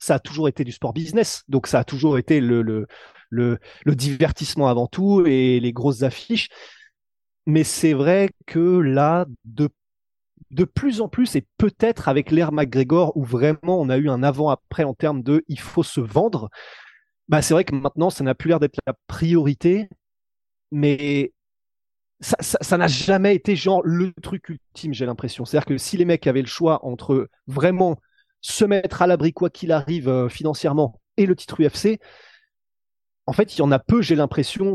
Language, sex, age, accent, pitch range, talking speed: French, male, 20-39, French, 130-175 Hz, 190 wpm